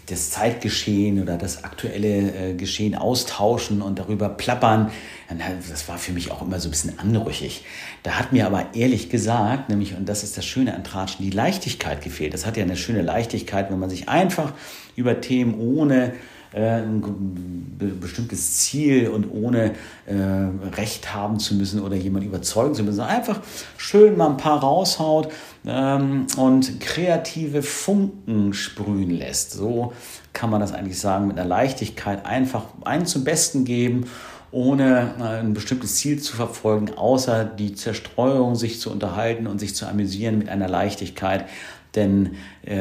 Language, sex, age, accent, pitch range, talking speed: German, male, 50-69, German, 95-120 Hz, 160 wpm